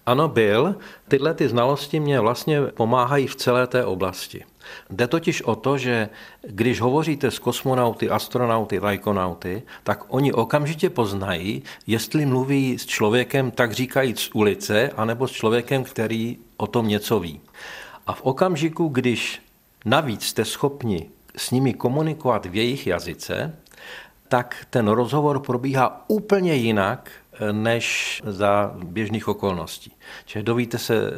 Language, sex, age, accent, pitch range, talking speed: Czech, male, 50-69, native, 105-125 Hz, 130 wpm